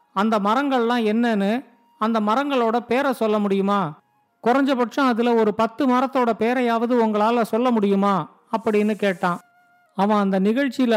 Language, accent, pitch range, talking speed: Tamil, native, 205-245 Hz, 120 wpm